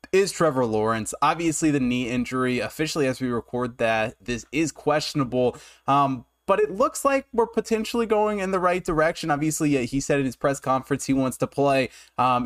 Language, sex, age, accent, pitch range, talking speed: English, male, 20-39, American, 120-155 Hz, 190 wpm